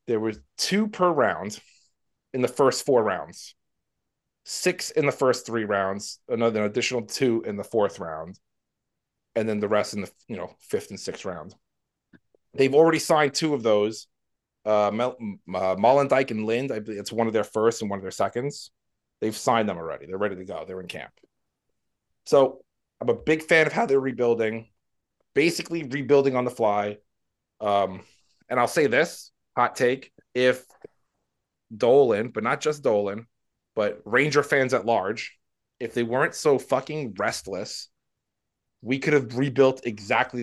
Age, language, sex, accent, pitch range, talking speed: 30-49, English, male, American, 110-145 Hz, 170 wpm